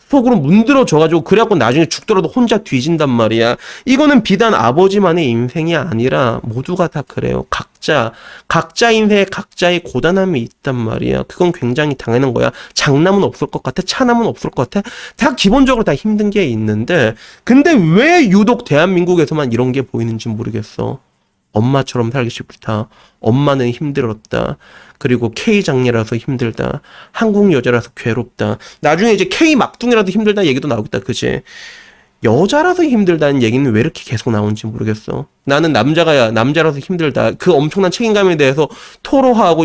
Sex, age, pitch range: male, 30-49, 120-200 Hz